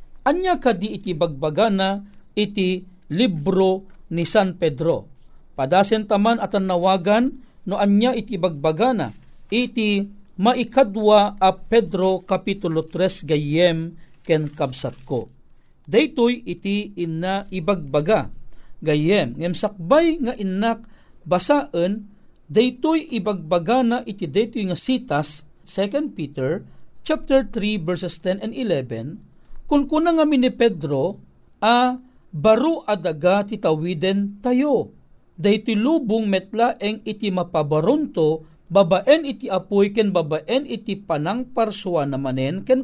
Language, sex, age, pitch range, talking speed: Filipino, male, 40-59, 180-255 Hz, 105 wpm